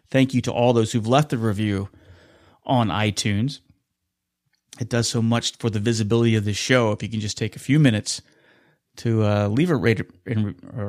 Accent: American